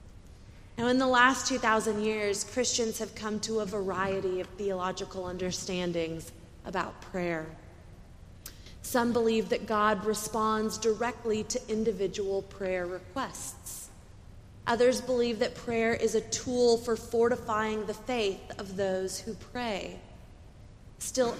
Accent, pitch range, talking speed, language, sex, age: American, 190-230 Hz, 120 wpm, English, female, 30-49